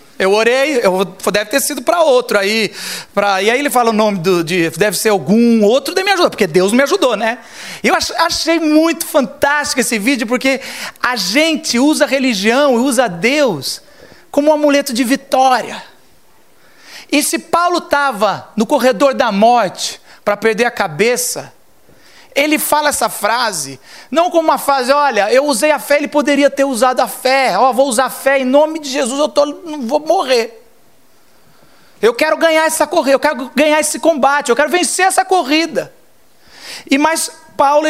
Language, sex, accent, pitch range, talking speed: Portuguese, male, Brazilian, 235-300 Hz, 180 wpm